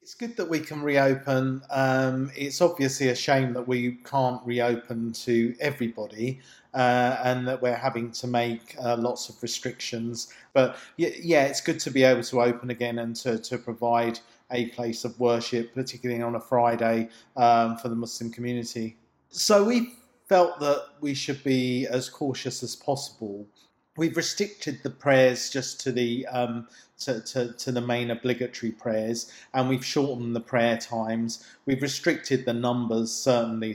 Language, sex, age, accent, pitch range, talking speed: English, male, 40-59, British, 115-130 Hz, 165 wpm